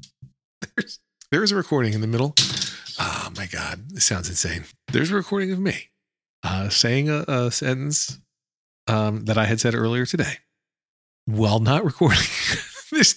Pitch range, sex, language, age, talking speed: 100-140 Hz, male, English, 40-59, 160 wpm